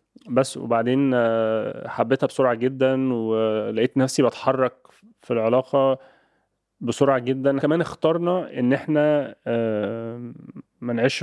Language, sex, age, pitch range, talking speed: Arabic, male, 20-39, 115-130 Hz, 90 wpm